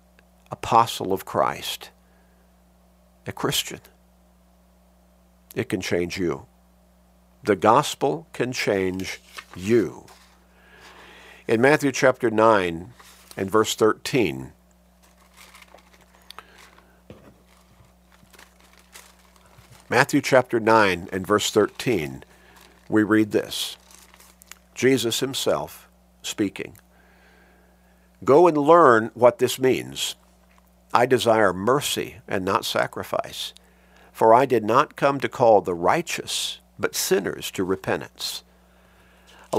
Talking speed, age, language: 90 wpm, 50-69, English